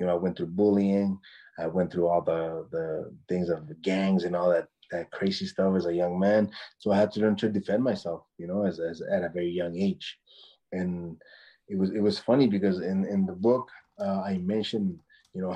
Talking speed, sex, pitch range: 230 wpm, male, 90-110 Hz